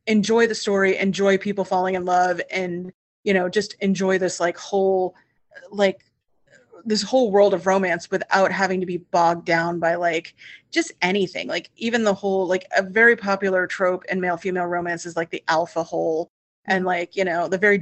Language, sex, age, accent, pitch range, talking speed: English, female, 30-49, American, 175-200 Hz, 190 wpm